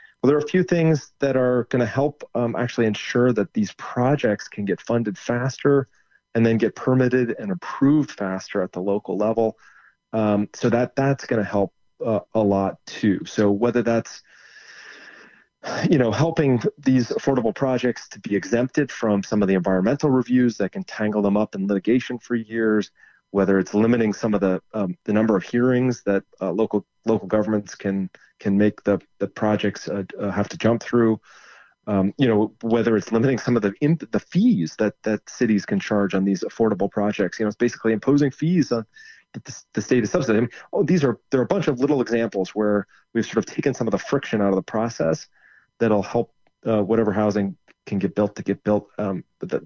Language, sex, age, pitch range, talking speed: English, male, 30-49, 105-125 Hz, 205 wpm